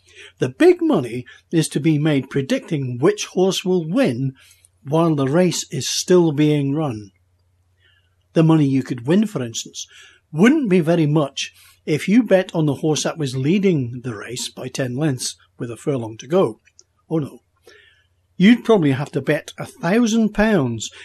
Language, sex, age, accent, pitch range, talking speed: English, male, 60-79, British, 125-185 Hz, 165 wpm